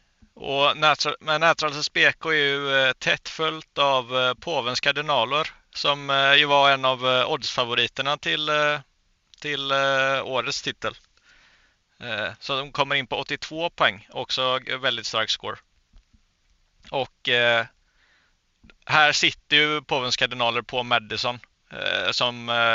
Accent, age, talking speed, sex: native, 30-49, 110 wpm, male